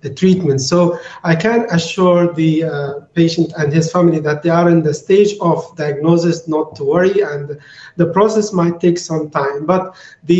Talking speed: 185 wpm